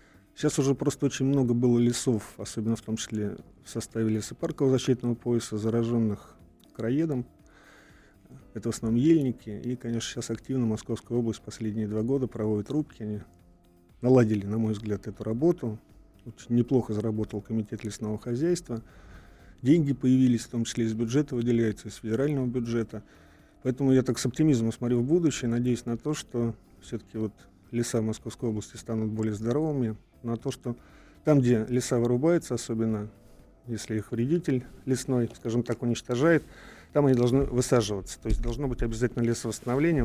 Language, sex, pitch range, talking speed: Russian, male, 110-125 Hz, 150 wpm